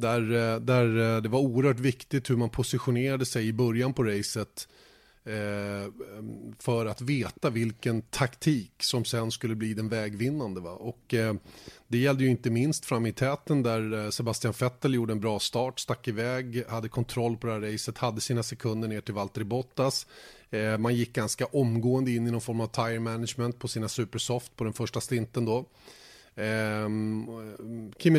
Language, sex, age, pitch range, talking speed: Swedish, male, 30-49, 110-130 Hz, 170 wpm